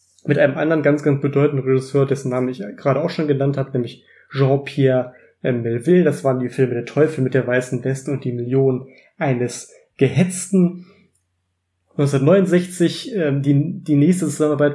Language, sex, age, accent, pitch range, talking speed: German, male, 30-49, German, 135-155 Hz, 150 wpm